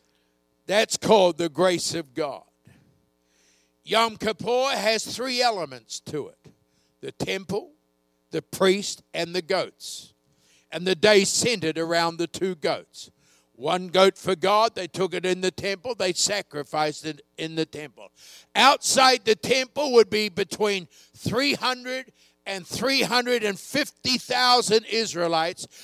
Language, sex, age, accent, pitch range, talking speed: English, male, 60-79, American, 170-235 Hz, 125 wpm